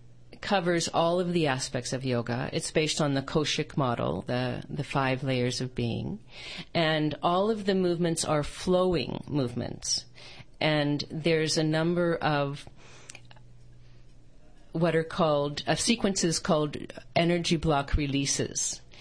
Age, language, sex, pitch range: 40-59, English, female, 130-165 Hz